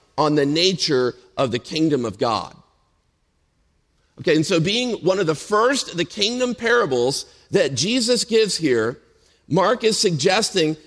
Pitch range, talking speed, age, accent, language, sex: 150-200 Hz, 150 wpm, 50-69, American, English, male